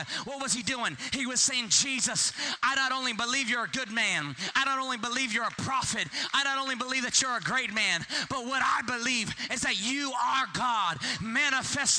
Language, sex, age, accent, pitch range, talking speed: English, male, 30-49, American, 160-265 Hz, 210 wpm